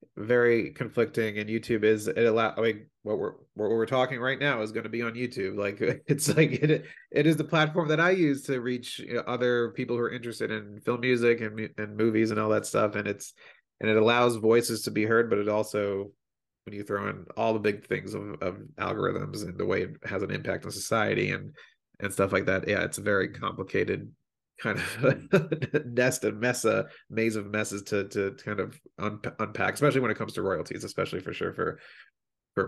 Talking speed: 220 wpm